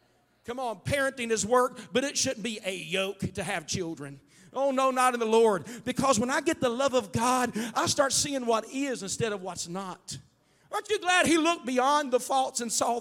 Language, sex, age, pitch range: English, male, 50-69, 190-280 Hz